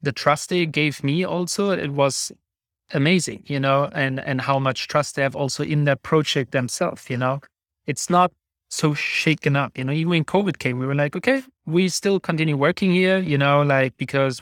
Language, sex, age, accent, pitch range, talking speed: English, male, 30-49, German, 130-160 Hz, 205 wpm